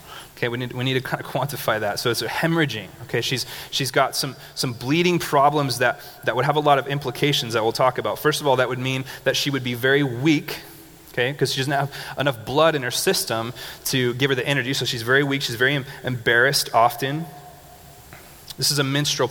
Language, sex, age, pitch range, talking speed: English, male, 30-49, 125-150 Hz, 230 wpm